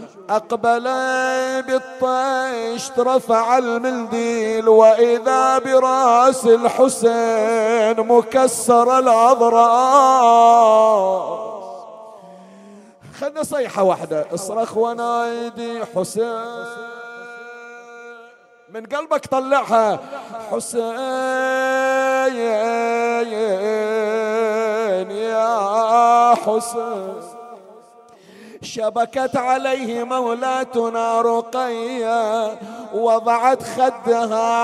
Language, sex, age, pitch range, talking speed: Arabic, male, 50-69, 225-255 Hz, 50 wpm